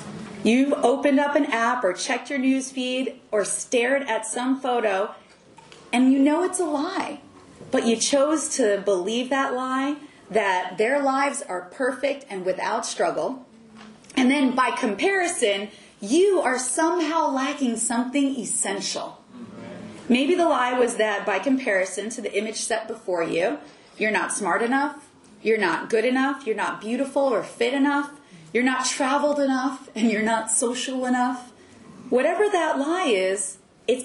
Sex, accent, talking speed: female, American, 155 wpm